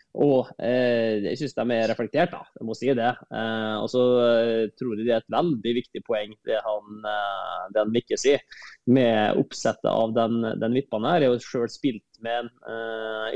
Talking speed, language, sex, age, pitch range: 190 wpm, English, male, 20-39, 120-145 Hz